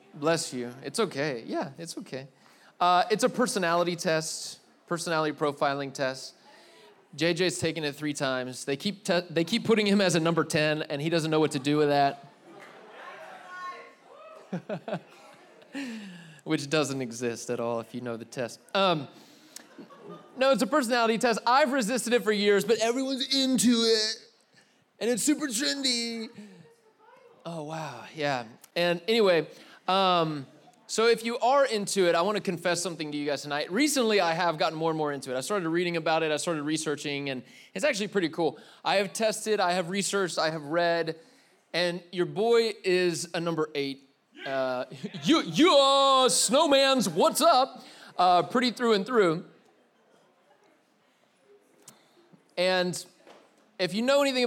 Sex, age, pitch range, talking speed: male, 30-49, 155-230 Hz, 160 wpm